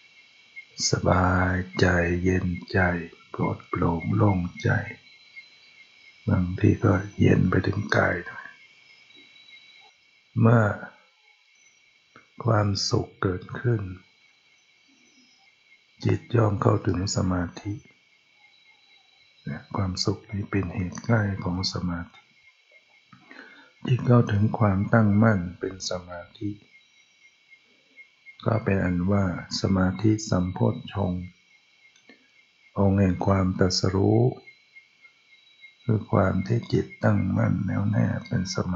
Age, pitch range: 60-79, 90-115 Hz